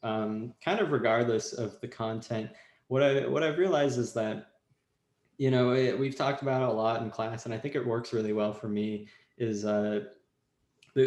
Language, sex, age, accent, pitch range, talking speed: English, male, 20-39, American, 110-130 Hz, 200 wpm